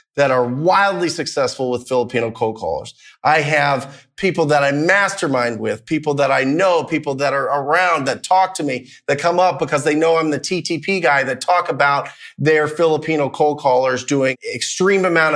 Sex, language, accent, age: male, English, American, 30-49